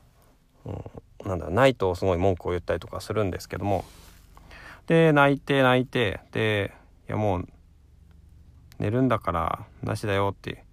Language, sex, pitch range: Japanese, male, 85-115 Hz